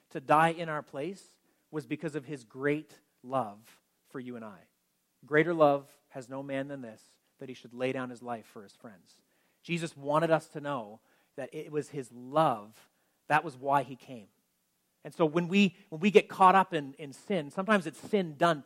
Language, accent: English, American